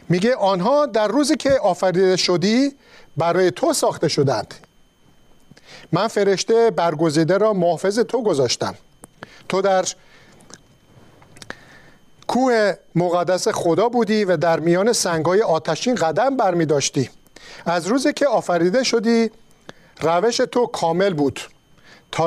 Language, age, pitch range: Persian, 50-69, 165-225 Hz